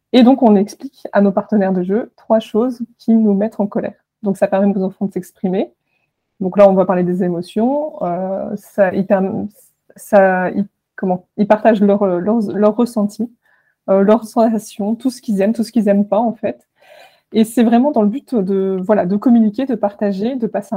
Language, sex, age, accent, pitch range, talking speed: French, female, 20-39, French, 195-225 Hz, 200 wpm